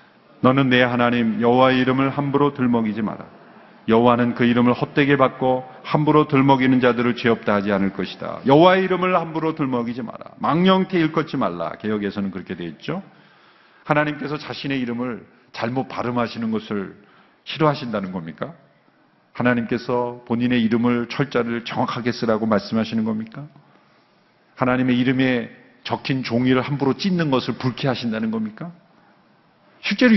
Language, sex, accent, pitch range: Korean, male, native, 115-145 Hz